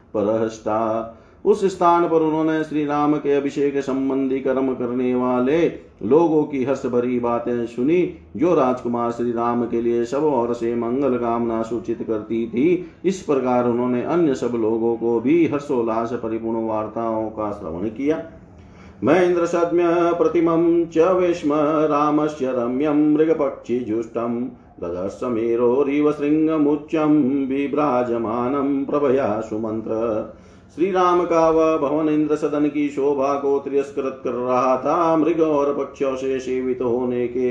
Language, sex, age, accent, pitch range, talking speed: Hindi, male, 50-69, native, 120-155 Hz, 110 wpm